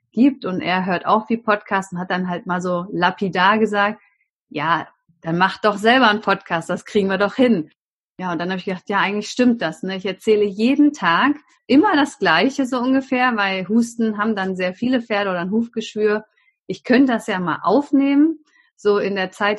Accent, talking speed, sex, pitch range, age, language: German, 205 wpm, female, 195-250 Hz, 30-49, German